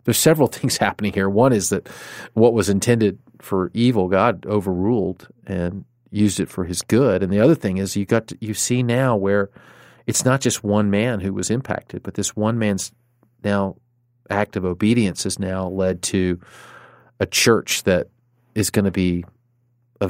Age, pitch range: 40-59, 90-115 Hz